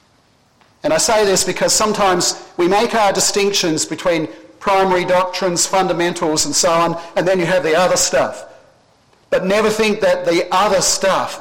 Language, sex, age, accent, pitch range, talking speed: English, male, 50-69, Australian, 160-210 Hz, 165 wpm